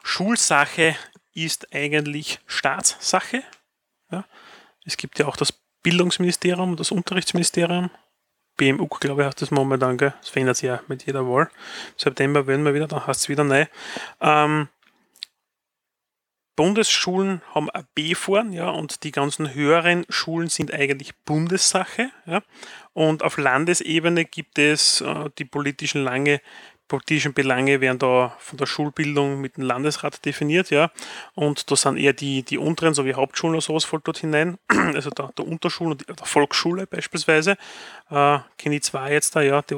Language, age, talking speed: German, 30-49, 150 wpm